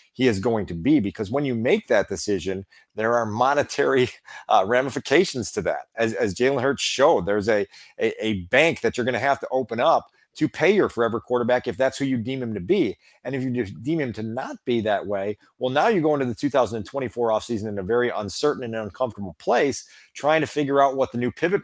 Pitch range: 115-150 Hz